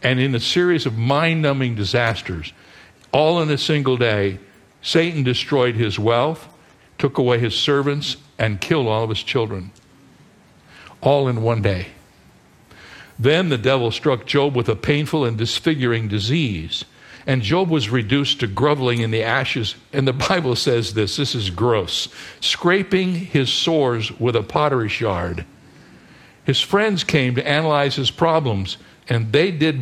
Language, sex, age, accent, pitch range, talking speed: English, male, 60-79, American, 120-165 Hz, 150 wpm